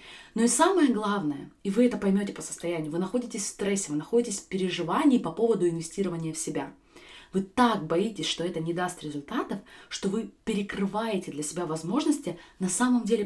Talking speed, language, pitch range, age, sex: 180 wpm, Russian, 180-235 Hz, 20-39, female